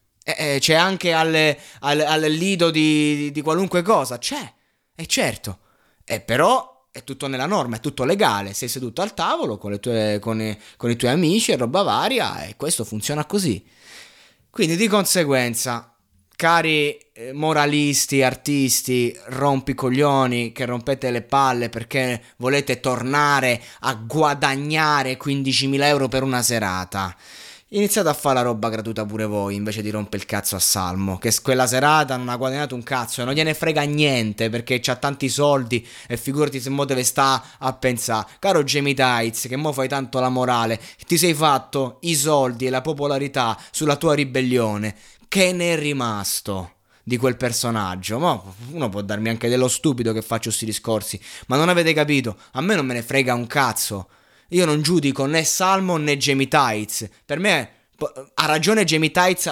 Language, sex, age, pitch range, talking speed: Italian, male, 20-39, 115-150 Hz, 165 wpm